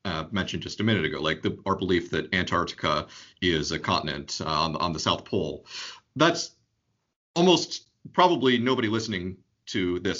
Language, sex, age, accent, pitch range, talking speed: English, male, 40-59, American, 95-120 Hz, 160 wpm